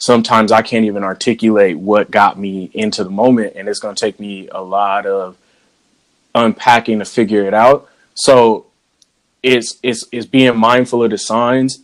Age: 20-39